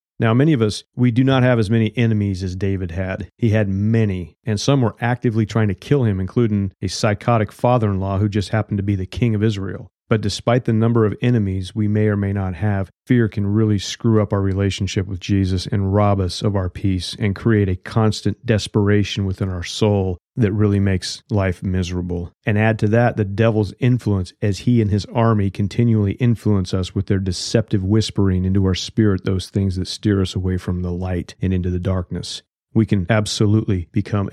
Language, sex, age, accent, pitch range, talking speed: English, male, 40-59, American, 95-115 Hz, 205 wpm